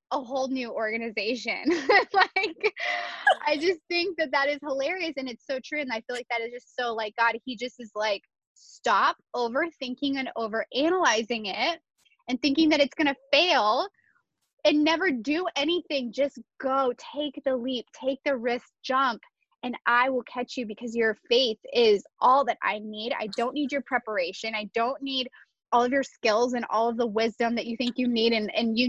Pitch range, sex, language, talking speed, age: 220-275 Hz, female, English, 195 wpm, 10-29